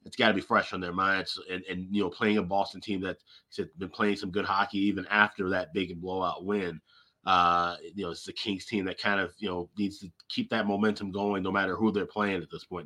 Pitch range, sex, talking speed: 95-110 Hz, male, 250 wpm